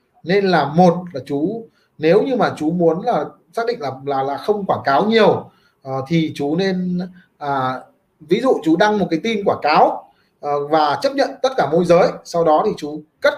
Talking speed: 210 wpm